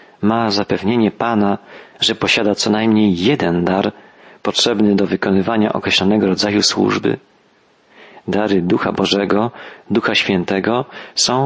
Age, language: 40-59, Polish